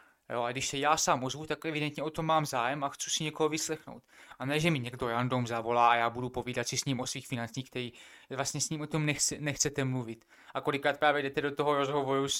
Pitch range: 130-145 Hz